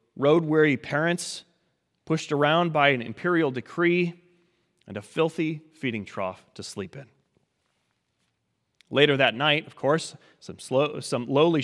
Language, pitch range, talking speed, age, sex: English, 125-170 Hz, 130 wpm, 30-49, male